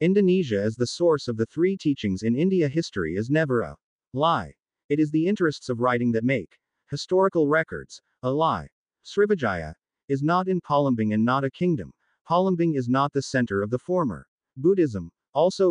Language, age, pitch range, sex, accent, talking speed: English, 40-59, 115-165 Hz, male, American, 175 wpm